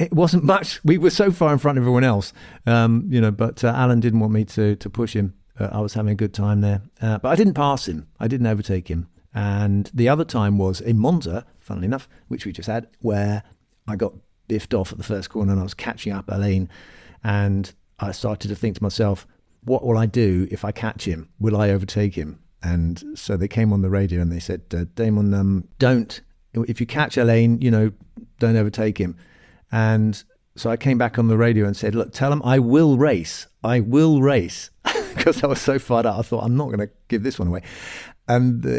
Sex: male